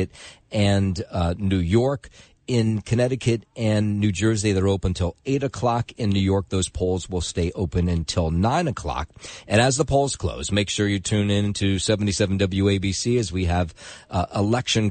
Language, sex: English, male